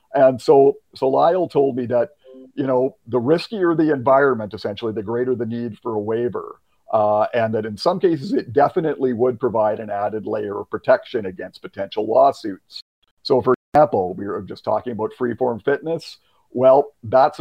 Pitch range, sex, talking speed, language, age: 110-140 Hz, male, 175 wpm, English, 50-69